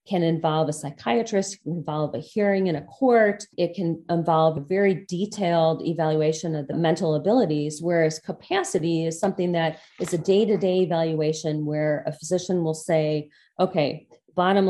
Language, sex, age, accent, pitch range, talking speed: English, female, 30-49, American, 155-180 Hz, 155 wpm